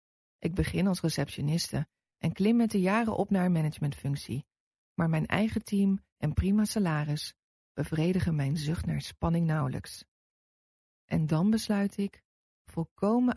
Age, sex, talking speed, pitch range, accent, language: 40-59, female, 140 wpm, 140-195 Hz, Dutch, English